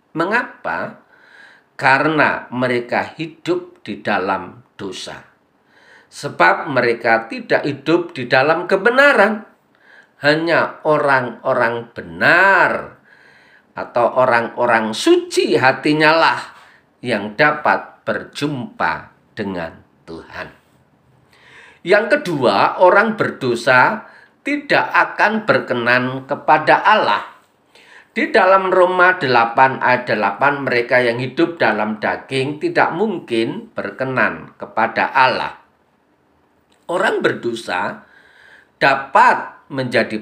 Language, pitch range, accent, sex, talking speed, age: Indonesian, 115-190 Hz, native, male, 85 wpm, 40-59